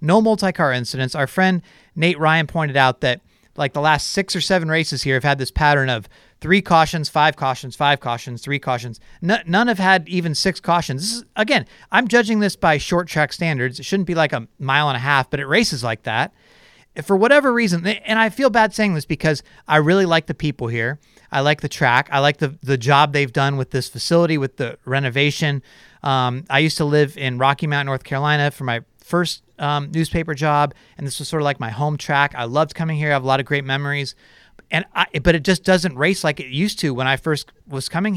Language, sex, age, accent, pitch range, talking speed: English, male, 30-49, American, 135-175 Hz, 235 wpm